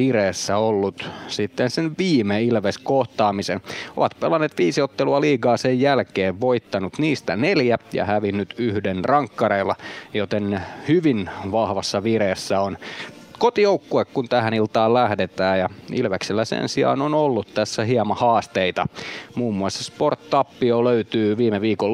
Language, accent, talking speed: Finnish, native, 120 wpm